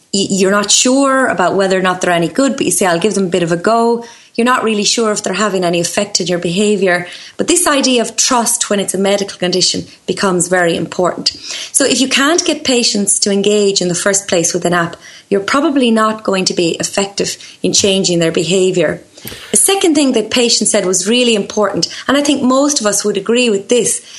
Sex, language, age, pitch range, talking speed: female, English, 30-49, 190-245 Hz, 225 wpm